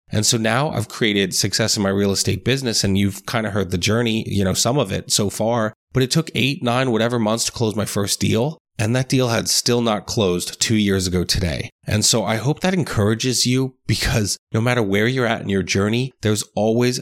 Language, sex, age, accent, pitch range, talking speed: English, male, 30-49, American, 105-125 Hz, 235 wpm